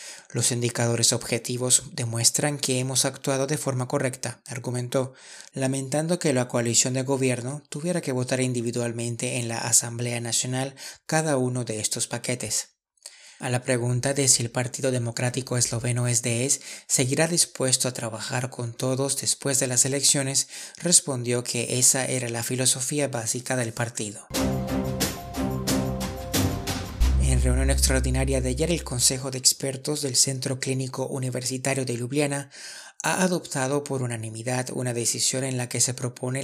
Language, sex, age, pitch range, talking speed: Spanish, male, 30-49, 120-135 Hz, 140 wpm